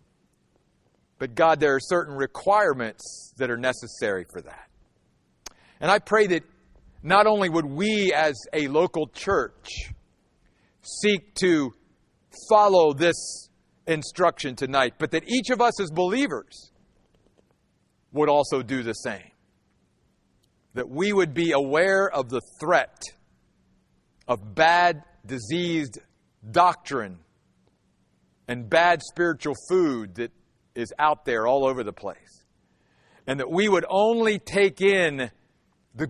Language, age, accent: English, 50-69, American